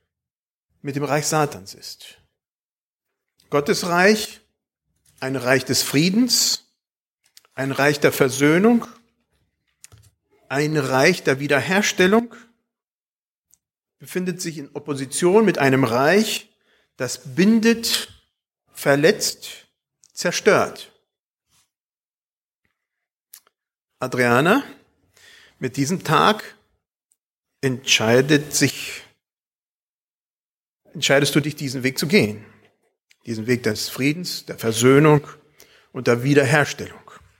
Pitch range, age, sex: 130-205 Hz, 50-69, male